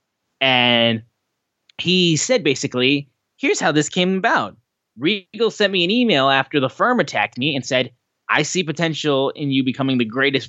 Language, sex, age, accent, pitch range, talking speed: English, male, 10-29, American, 120-150 Hz, 165 wpm